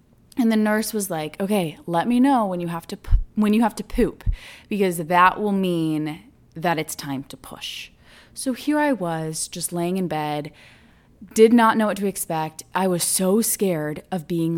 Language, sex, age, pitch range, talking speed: English, female, 20-39, 170-230 Hz, 200 wpm